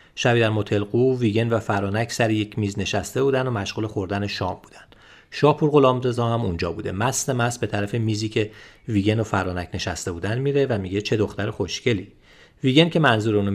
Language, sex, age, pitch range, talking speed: Persian, male, 40-59, 100-130 Hz, 180 wpm